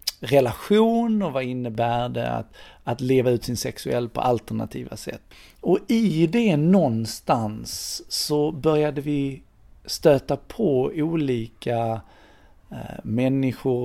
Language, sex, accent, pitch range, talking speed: Swedish, male, native, 120-150 Hz, 110 wpm